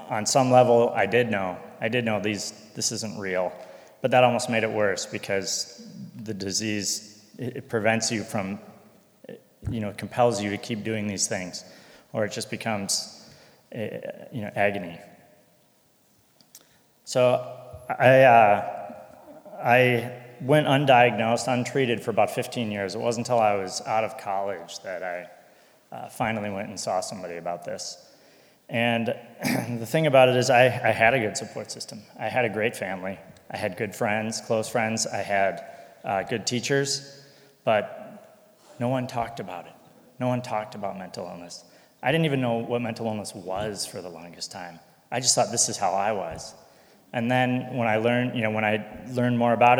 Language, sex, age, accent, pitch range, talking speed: English, male, 30-49, American, 105-125 Hz, 170 wpm